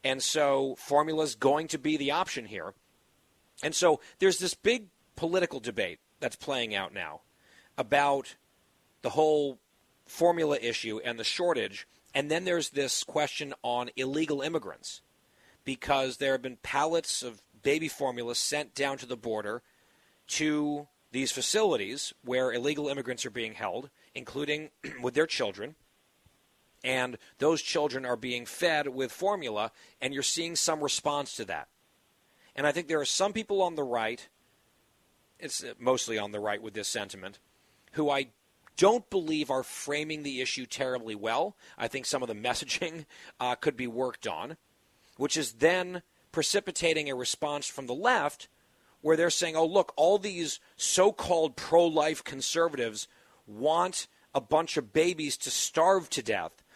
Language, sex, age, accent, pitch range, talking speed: English, male, 40-59, American, 130-160 Hz, 155 wpm